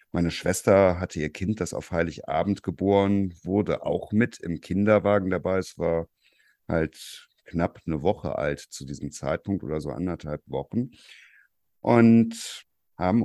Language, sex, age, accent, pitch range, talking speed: German, male, 50-69, German, 80-105 Hz, 140 wpm